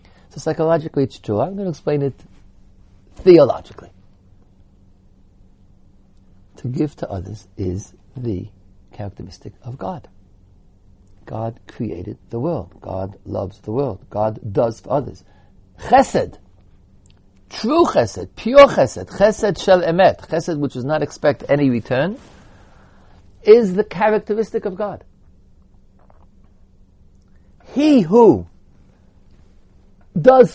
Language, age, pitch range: English, 60-79, 95-140 Hz